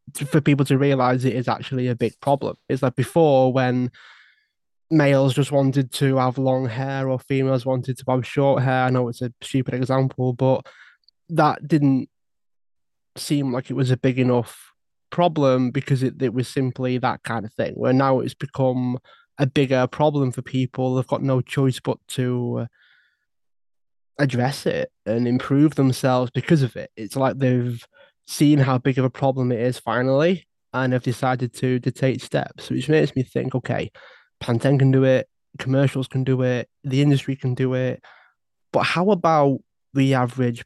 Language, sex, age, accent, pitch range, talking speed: English, male, 20-39, British, 125-140 Hz, 175 wpm